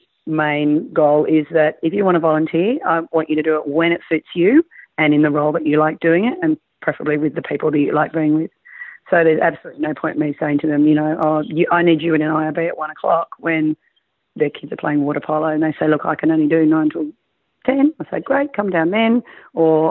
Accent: Australian